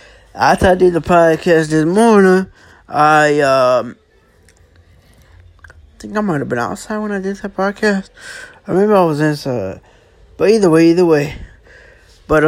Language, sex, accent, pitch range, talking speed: English, male, American, 125-165 Hz, 105 wpm